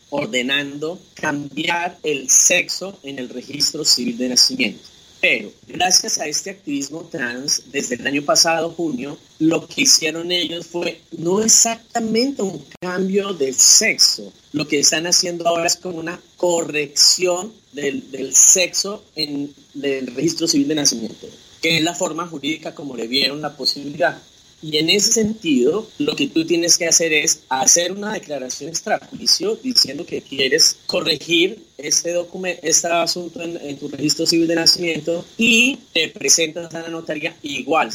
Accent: Colombian